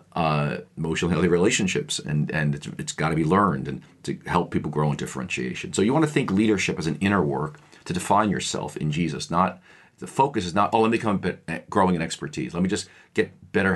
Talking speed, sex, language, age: 230 wpm, male, English, 40-59